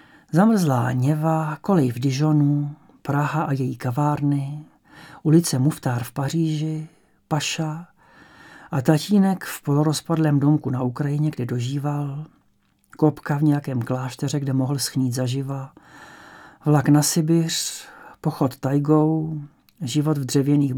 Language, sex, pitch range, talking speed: English, male, 140-160 Hz, 115 wpm